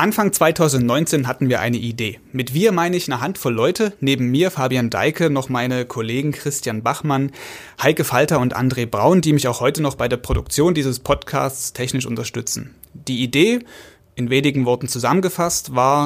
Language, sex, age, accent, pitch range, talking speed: German, male, 30-49, German, 125-155 Hz, 170 wpm